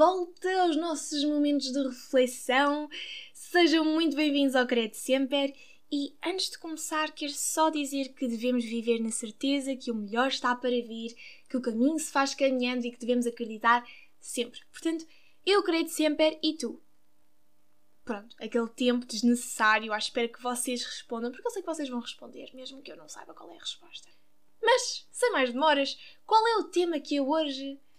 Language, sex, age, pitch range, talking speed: Portuguese, female, 10-29, 245-315 Hz, 180 wpm